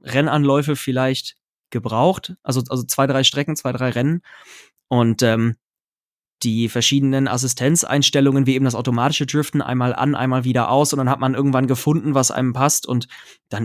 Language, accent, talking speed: German, German, 165 wpm